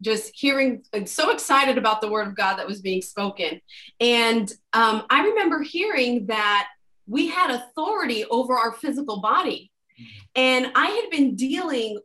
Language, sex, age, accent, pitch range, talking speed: English, female, 30-49, American, 215-290 Hz, 160 wpm